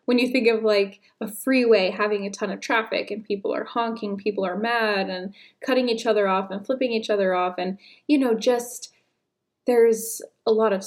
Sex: female